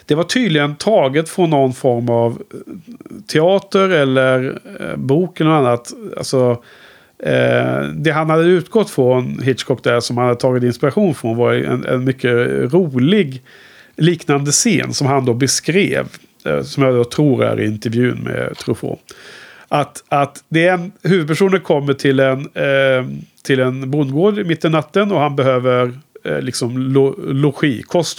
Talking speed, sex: 150 wpm, male